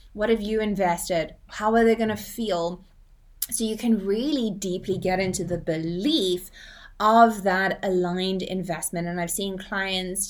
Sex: female